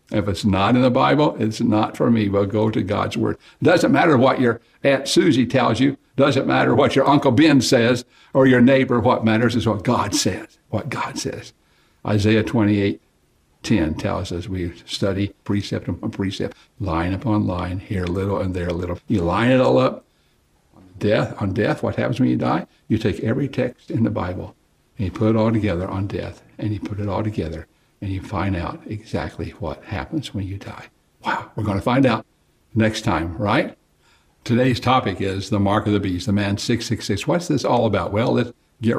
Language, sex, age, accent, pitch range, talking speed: English, male, 60-79, American, 100-125 Hz, 205 wpm